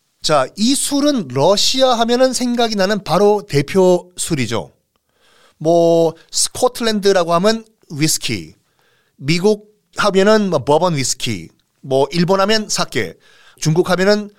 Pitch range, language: 140-220 Hz, Korean